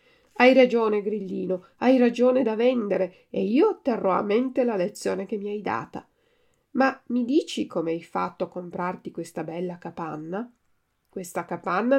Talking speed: 155 wpm